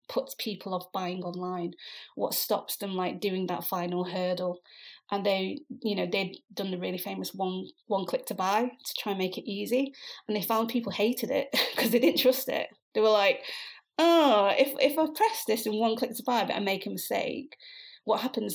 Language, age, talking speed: English, 30-49, 210 wpm